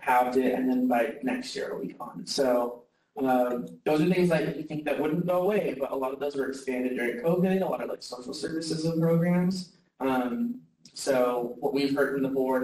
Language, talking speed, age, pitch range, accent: English, 225 wpm, 20-39, 130-175 Hz, American